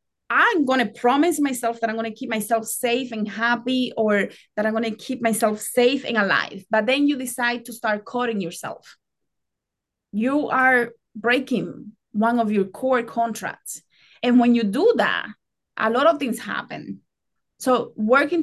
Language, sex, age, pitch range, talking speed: English, female, 30-49, 220-265 Hz, 170 wpm